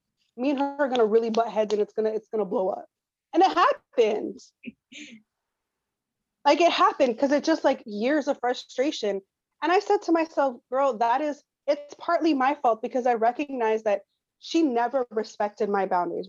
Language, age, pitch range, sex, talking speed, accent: English, 30-49, 205-270 Hz, female, 190 wpm, American